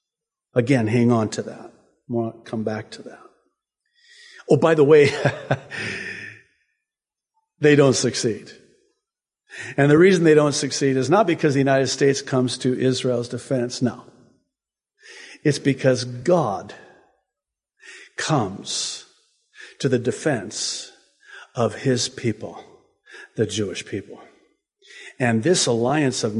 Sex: male